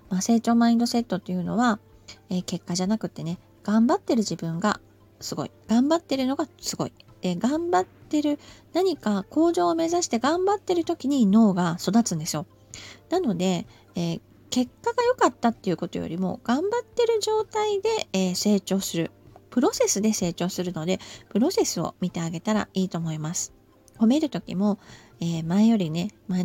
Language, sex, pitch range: Japanese, female, 175-275 Hz